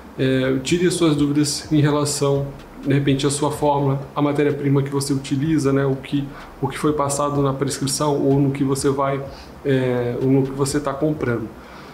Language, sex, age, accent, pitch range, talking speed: Portuguese, male, 20-39, Brazilian, 135-150 Hz, 165 wpm